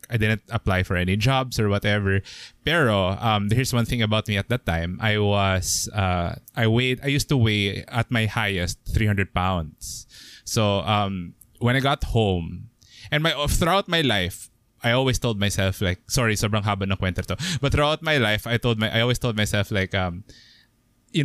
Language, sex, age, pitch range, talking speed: Filipino, male, 20-39, 100-130 Hz, 190 wpm